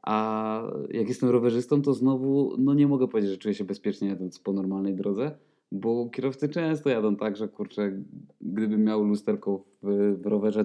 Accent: native